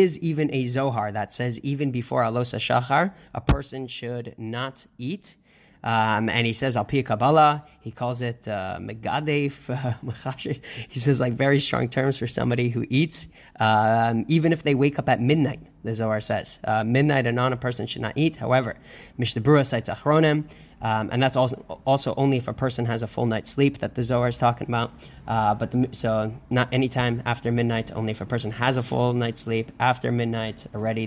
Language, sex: English, male